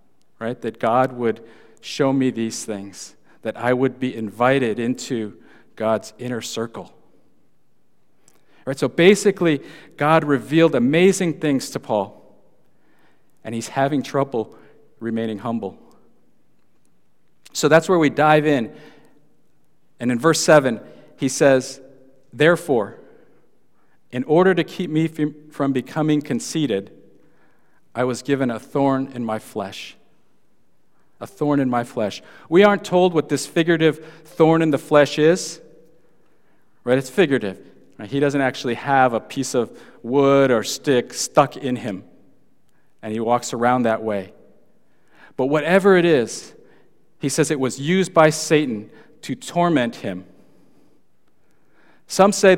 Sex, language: male, English